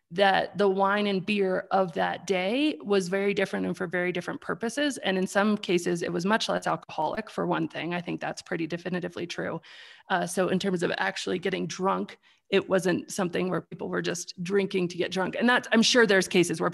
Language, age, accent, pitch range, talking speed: English, 30-49, American, 185-225 Hz, 215 wpm